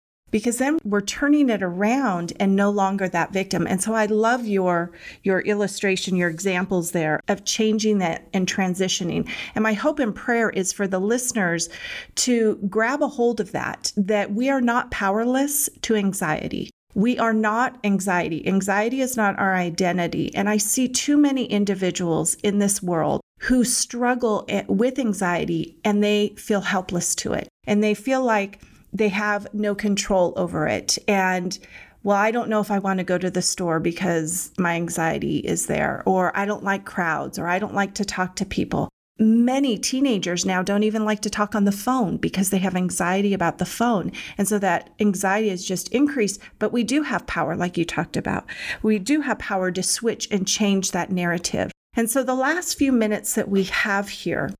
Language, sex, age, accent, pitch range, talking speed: English, female, 40-59, American, 185-230 Hz, 185 wpm